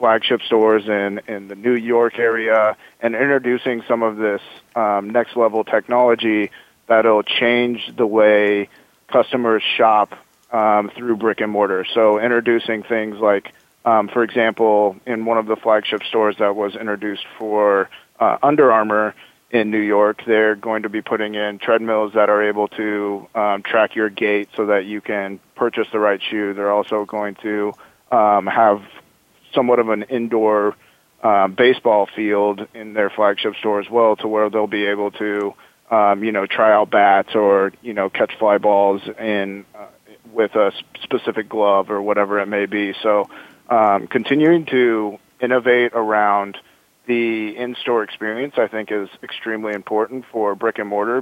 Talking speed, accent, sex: 165 wpm, American, male